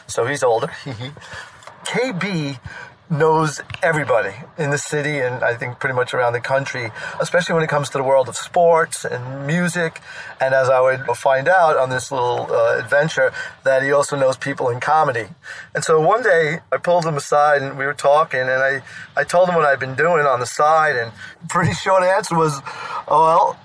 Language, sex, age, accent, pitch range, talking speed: English, male, 40-59, American, 135-170 Hz, 195 wpm